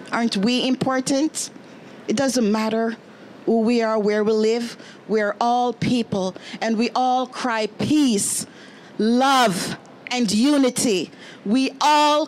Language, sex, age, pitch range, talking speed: English, female, 40-59, 225-285 Hz, 120 wpm